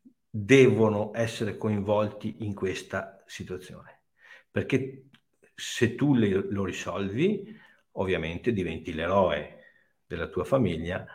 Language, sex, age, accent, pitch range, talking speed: Italian, male, 50-69, native, 110-140 Hz, 90 wpm